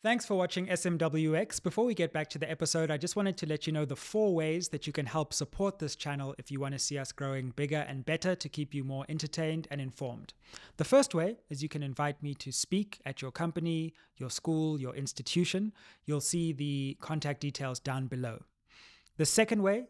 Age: 20-39